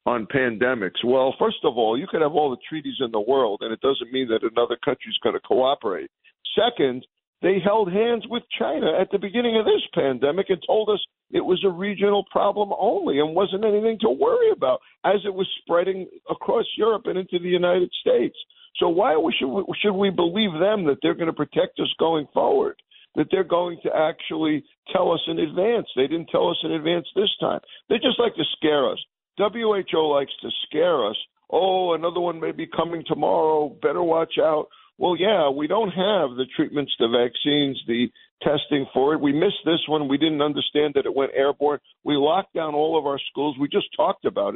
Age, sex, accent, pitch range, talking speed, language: 50-69, male, American, 140-205 Hz, 205 wpm, English